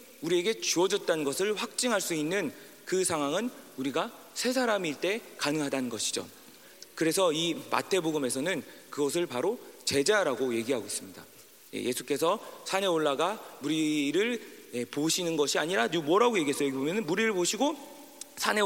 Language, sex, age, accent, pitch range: Korean, male, 40-59, native, 160-265 Hz